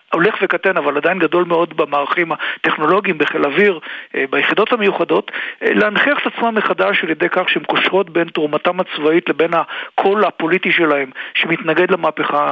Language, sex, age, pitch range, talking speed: Hebrew, male, 50-69, 155-200 Hz, 145 wpm